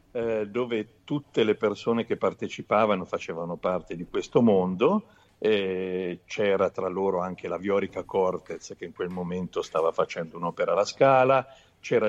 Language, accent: Italian, native